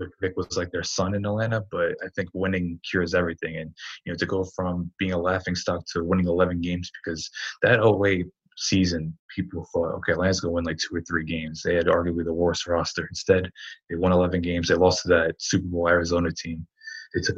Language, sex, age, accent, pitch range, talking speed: English, male, 20-39, American, 85-100 Hz, 220 wpm